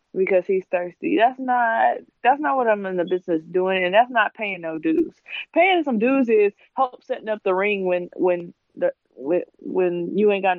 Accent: American